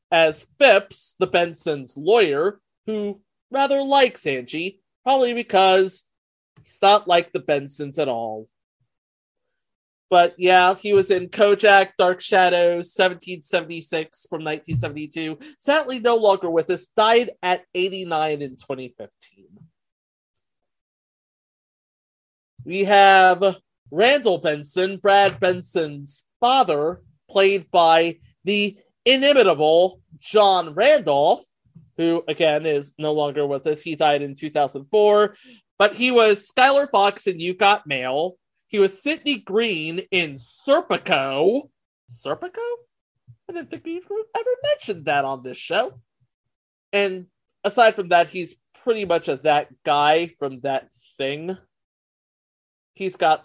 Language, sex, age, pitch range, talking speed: English, male, 30-49, 150-205 Hz, 115 wpm